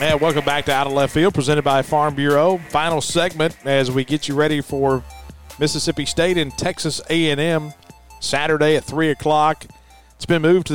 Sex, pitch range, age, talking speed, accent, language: male, 130-155 Hz, 40-59, 190 wpm, American, English